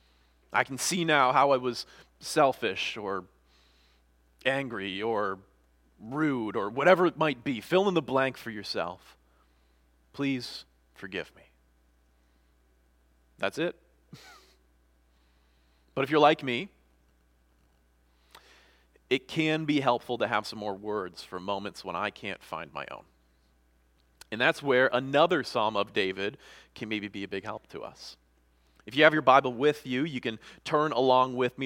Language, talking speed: English, 150 wpm